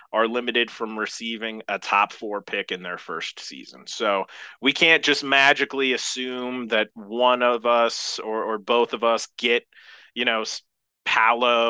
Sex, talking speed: male, 160 wpm